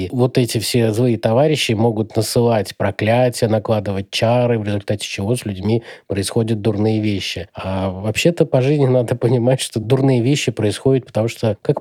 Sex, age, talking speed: male, 20-39, 160 wpm